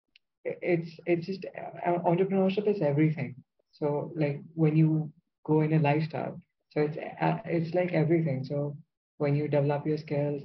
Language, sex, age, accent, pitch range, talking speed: English, female, 20-39, Indian, 140-160 Hz, 145 wpm